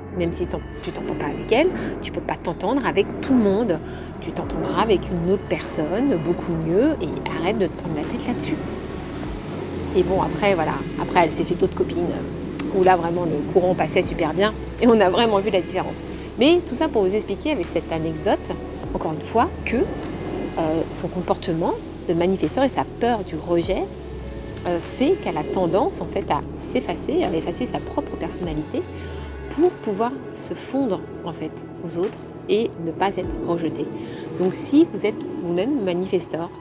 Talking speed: 185 wpm